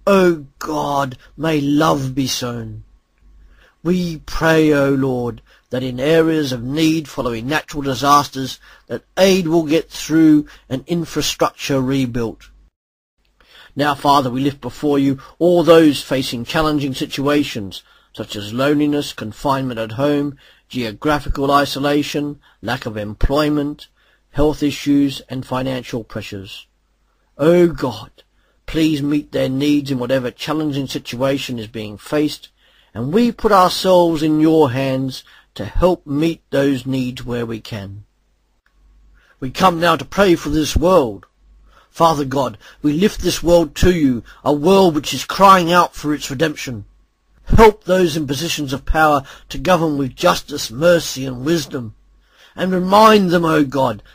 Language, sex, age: English, male, 40-59